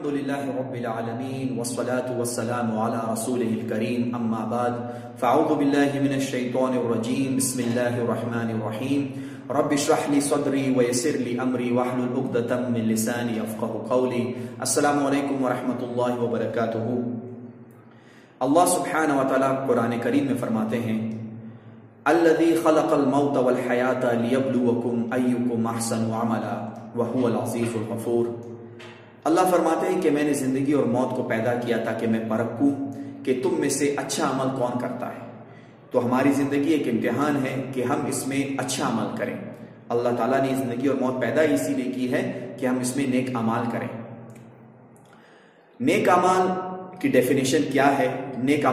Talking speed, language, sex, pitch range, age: 95 wpm, Urdu, male, 120-140 Hz, 30-49